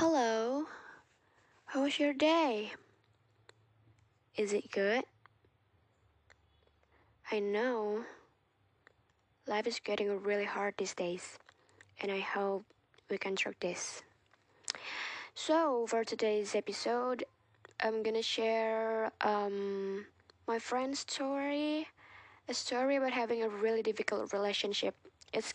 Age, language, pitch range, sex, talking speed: 10-29, Indonesian, 180-235 Hz, female, 105 wpm